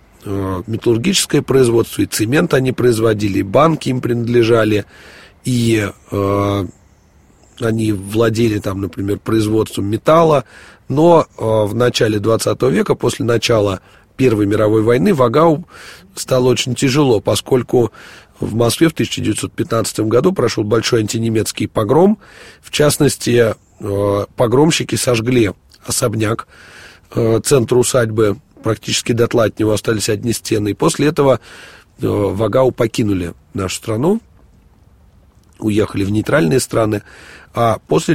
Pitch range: 105-125 Hz